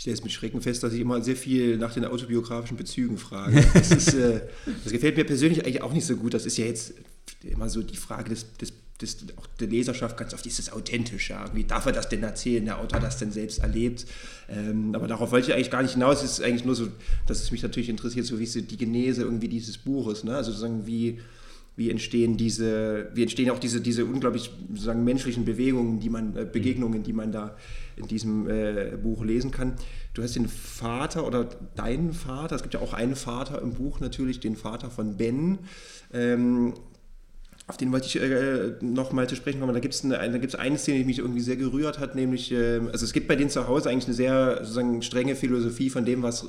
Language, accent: German, German